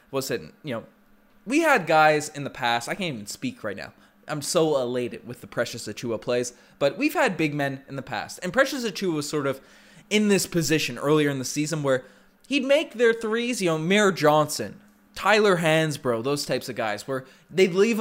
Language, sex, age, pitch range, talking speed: English, male, 20-39, 150-230 Hz, 205 wpm